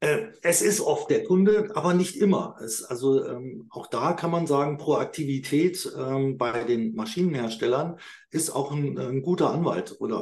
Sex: male